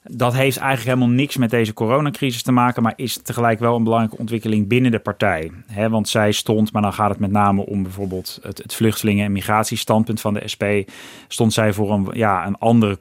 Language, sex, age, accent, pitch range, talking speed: Dutch, male, 30-49, Dutch, 100-115 Hz, 210 wpm